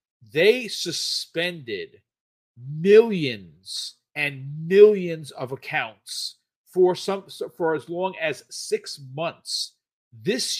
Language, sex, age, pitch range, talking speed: English, male, 40-59, 140-210 Hz, 90 wpm